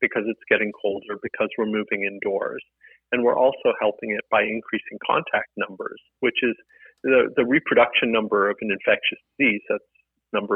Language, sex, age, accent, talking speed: English, male, 40-59, American, 165 wpm